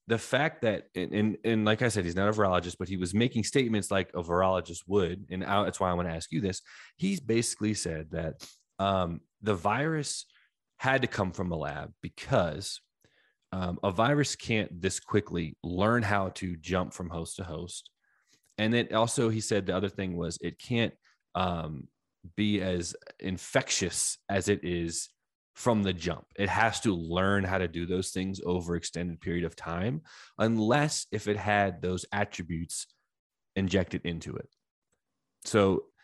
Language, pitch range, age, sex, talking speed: English, 90-110 Hz, 20-39, male, 170 wpm